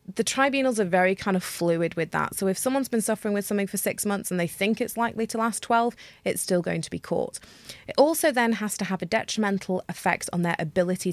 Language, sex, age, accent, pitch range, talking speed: English, female, 30-49, British, 180-240 Hz, 245 wpm